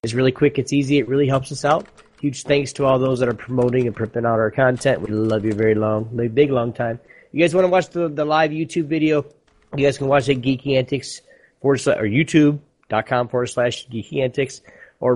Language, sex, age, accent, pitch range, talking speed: English, male, 30-49, American, 115-140 Hz, 220 wpm